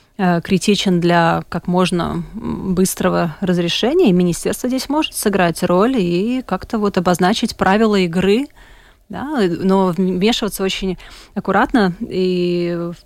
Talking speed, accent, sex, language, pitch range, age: 105 wpm, native, female, Russian, 180-210 Hz, 30-49